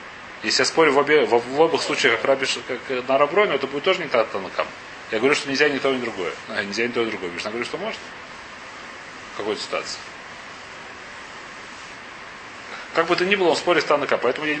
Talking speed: 195 wpm